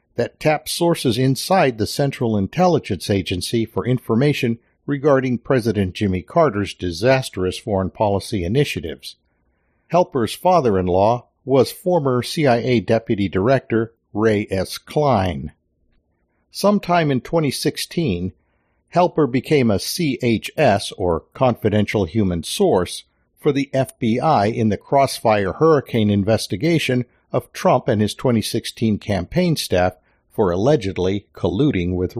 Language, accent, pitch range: English, American, 100-140 Hz